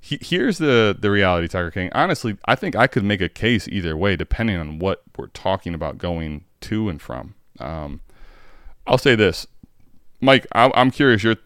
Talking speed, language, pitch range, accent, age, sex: 190 wpm, English, 85-120 Hz, American, 20-39, male